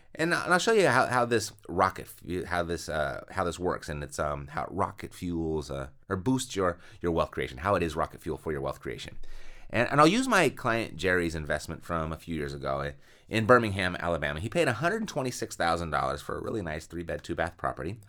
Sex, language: male, English